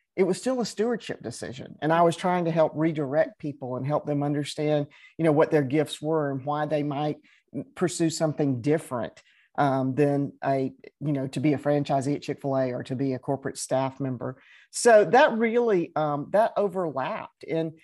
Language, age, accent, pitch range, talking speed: English, 50-69, American, 135-160 Hz, 190 wpm